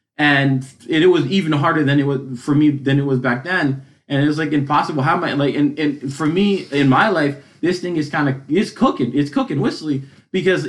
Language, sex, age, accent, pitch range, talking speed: English, male, 20-39, American, 135-160 Hz, 235 wpm